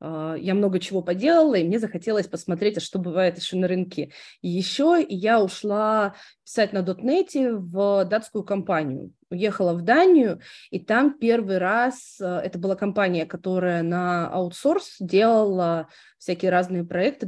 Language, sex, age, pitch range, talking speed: Russian, female, 20-39, 180-215 Hz, 140 wpm